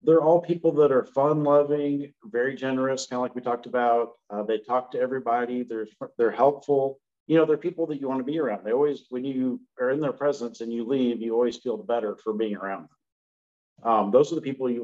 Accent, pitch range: American, 110-130 Hz